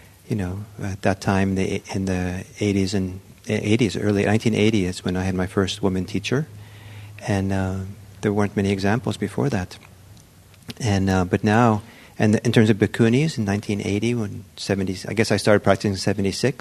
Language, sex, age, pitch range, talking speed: English, male, 50-69, 95-110 Hz, 180 wpm